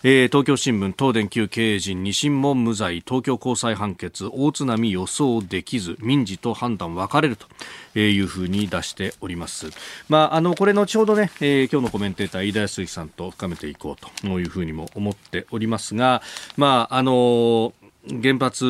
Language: Japanese